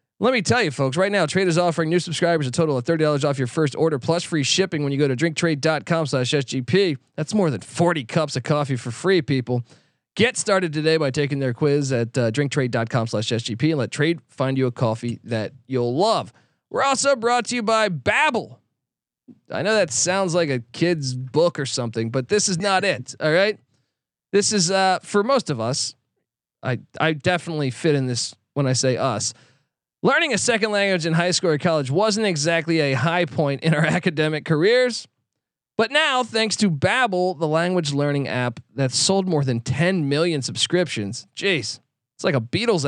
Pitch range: 135-185 Hz